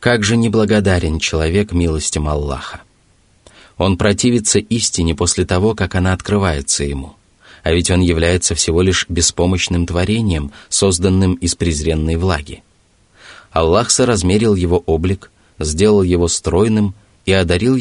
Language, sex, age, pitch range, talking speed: Russian, male, 20-39, 85-105 Hz, 120 wpm